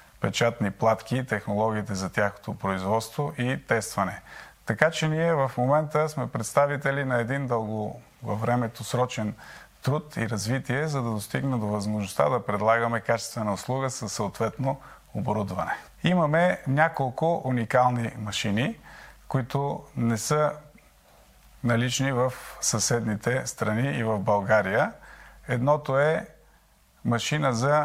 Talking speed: 115 wpm